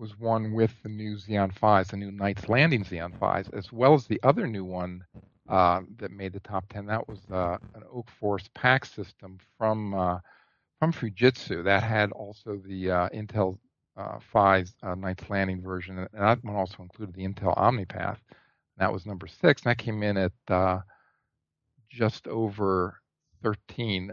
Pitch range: 95-110 Hz